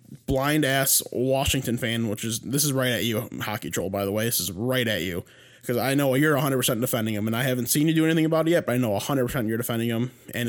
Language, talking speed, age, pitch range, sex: English, 270 wpm, 20-39, 120-145 Hz, male